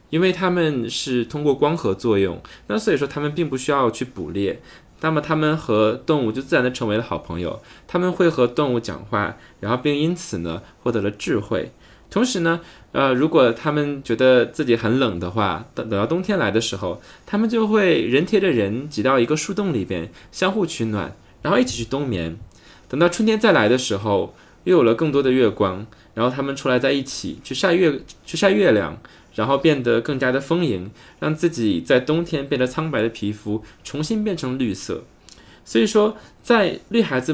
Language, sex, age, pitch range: Chinese, male, 20-39, 110-165 Hz